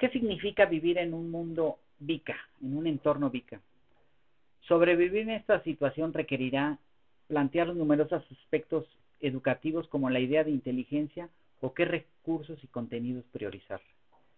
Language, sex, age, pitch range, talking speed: Spanish, male, 40-59, 130-160 Hz, 135 wpm